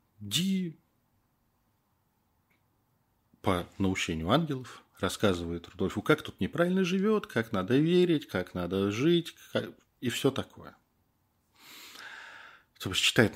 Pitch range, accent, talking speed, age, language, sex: 85-120 Hz, native, 90 wpm, 40-59, Russian, male